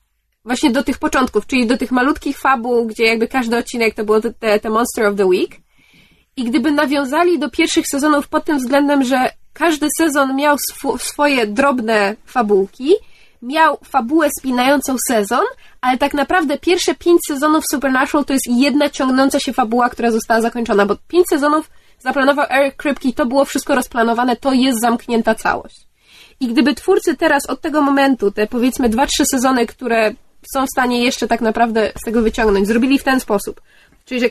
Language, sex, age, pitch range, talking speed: Polish, female, 20-39, 230-290 Hz, 175 wpm